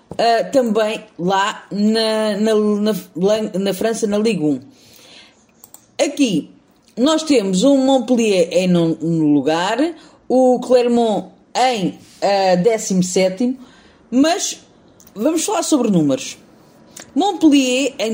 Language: Portuguese